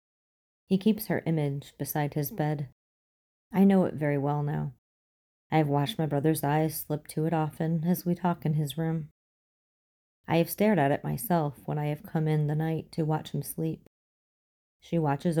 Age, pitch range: 30-49, 140-170 Hz